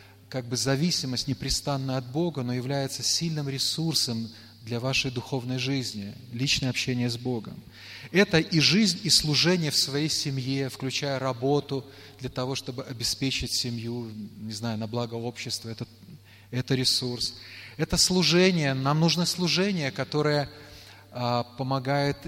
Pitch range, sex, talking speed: 120-155 Hz, male, 125 wpm